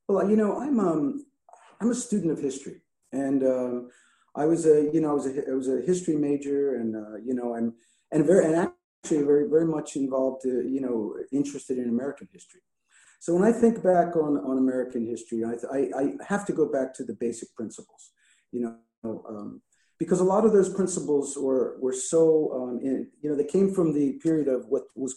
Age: 50-69